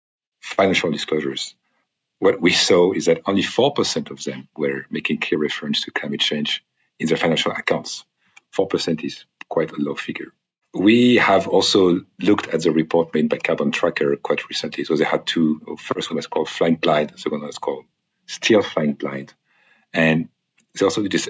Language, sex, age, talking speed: English, male, 50-69, 180 wpm